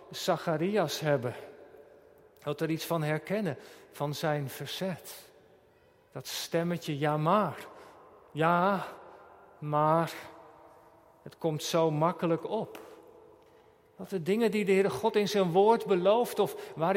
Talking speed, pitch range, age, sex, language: 120 wpm, 165-230 Hz, 50-69, male, Dutch